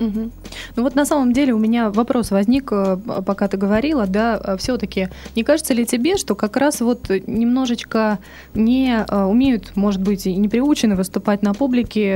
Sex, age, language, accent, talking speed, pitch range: female, 20-39, Russian, native, 165 wpm, 200-245 Hz